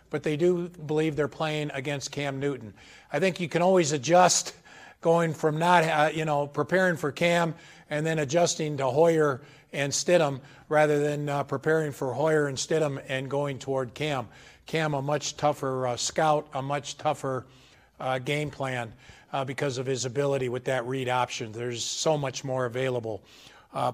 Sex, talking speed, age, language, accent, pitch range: male, 175 wpm, 50-69, English, American, 140-185 Hz